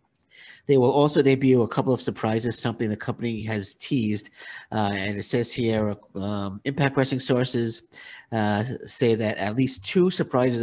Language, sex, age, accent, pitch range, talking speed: English, male, 50-69, American, 110-140 Hz, 165 wpm